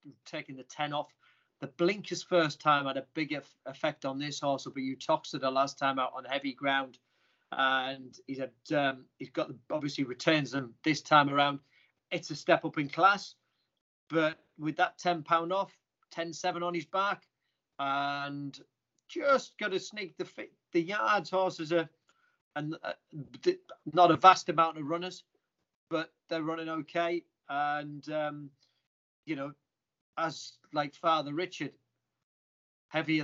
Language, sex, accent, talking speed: English, male, British, 155 wpm